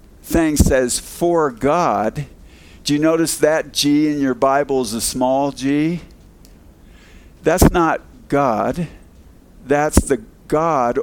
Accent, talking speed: American, 120 wpm